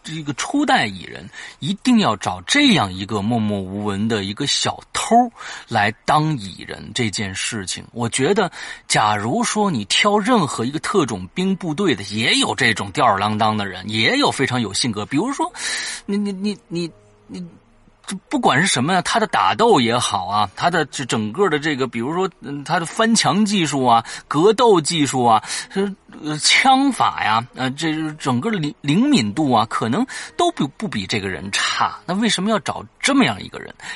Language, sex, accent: French, male, Chinese